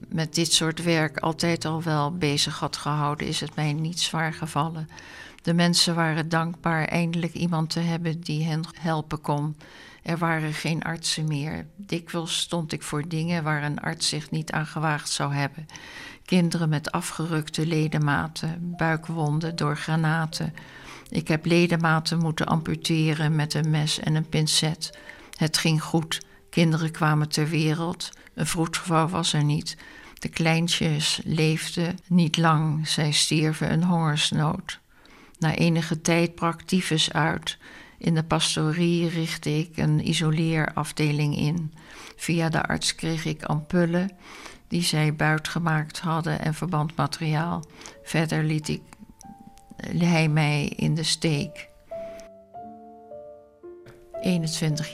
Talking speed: 135 wpm